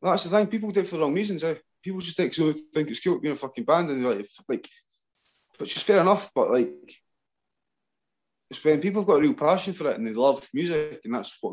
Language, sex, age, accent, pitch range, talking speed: English, male, 20-39, British, 120-170 Hz, 260 wpm